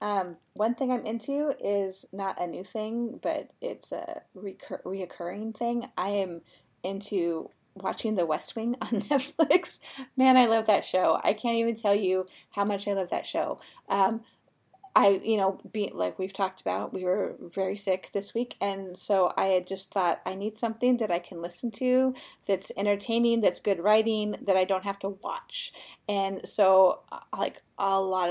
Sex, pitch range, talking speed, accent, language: female, 195-245 Hz, 180 wpm, American, English